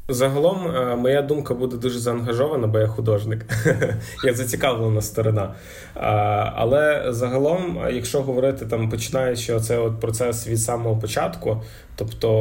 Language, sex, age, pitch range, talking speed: Ukrainian, male, 20-39, 110-120 Hz, 130 wpm